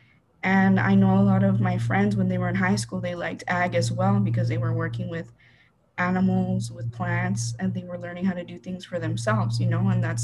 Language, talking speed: English, 240 wpm